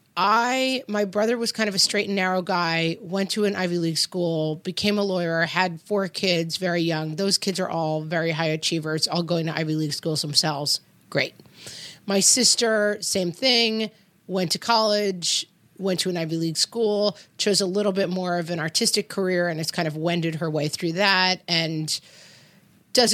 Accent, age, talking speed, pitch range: American, 30-49, 190 wpm, 165-205 Hz